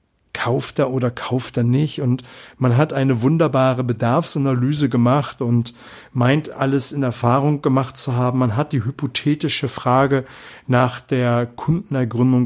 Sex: male